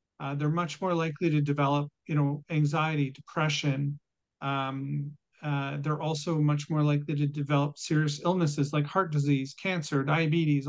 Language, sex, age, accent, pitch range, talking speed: English, male, 40-59, American, 145-160 Hz, 150 wpm